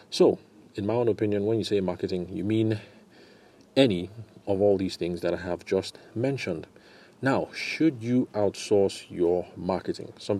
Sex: male